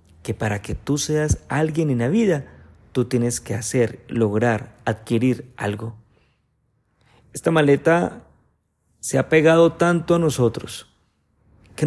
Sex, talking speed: male, 120 wpm